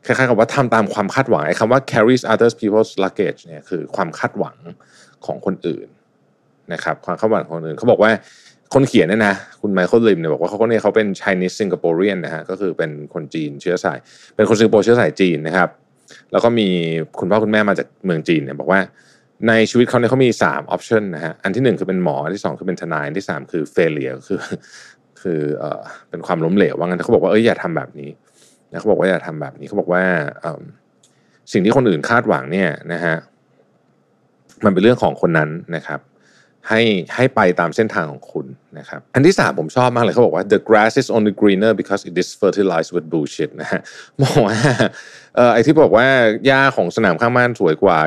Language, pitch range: Thai, 90-120 Hz